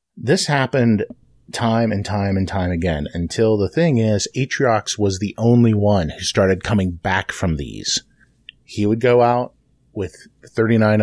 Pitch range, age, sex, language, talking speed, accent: 95-115 Hz, 30-49, male, English, 160 wpm, American